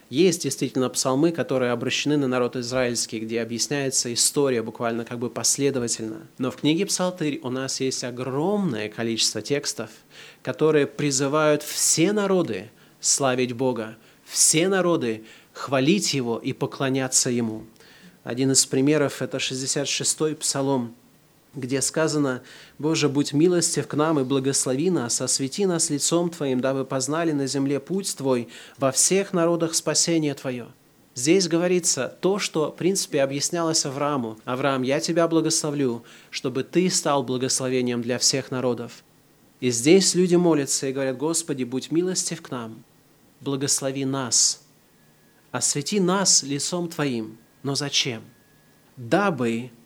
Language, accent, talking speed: Russian, native, 130 wpm